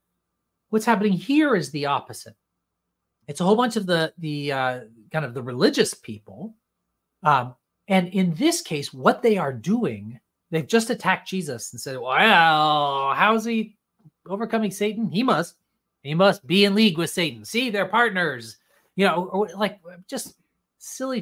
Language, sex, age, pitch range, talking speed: English, male, 30-49, 150-210 Hz, 160 wpm